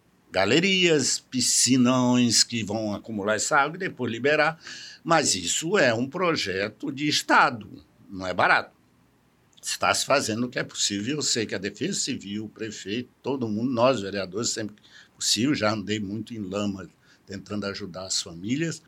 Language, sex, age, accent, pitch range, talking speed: Portuguese, male, 60-79, Brazilian, 110-160 Hz, 160 wpm